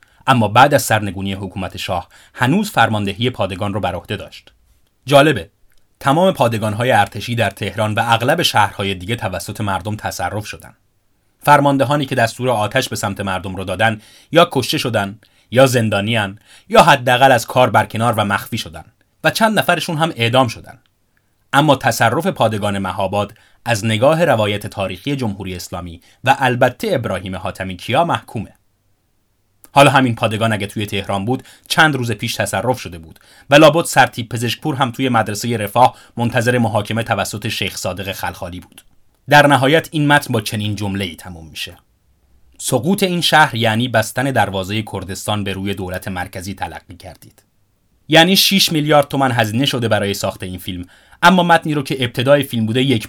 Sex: male